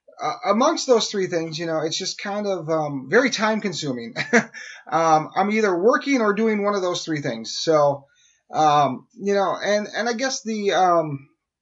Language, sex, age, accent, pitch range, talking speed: English, male, 30-49, American, 150-205 Hz, 185 wpm